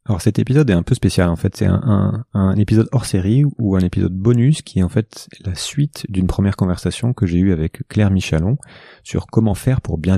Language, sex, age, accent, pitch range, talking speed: French, male, 30-49, French, 85-105 Hz, 235 wpm